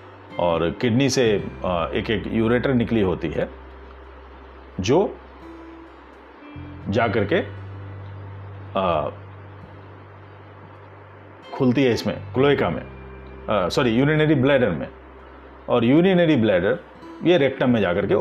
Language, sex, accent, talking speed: Hindi, male, native, 100 wpm